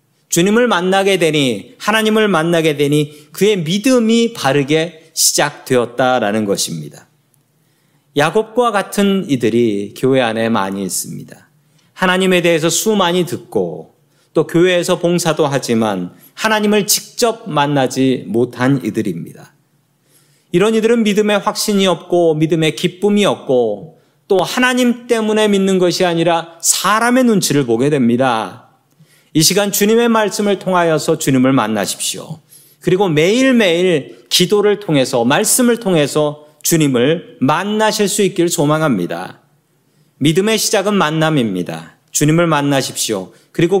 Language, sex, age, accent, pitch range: Korean, male, 40-59, native, 145-195 Hz